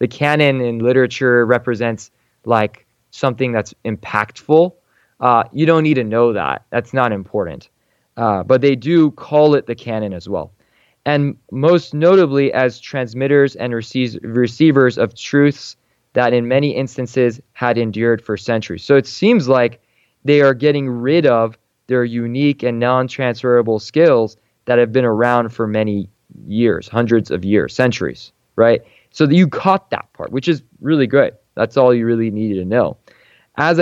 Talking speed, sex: 160 wpm, male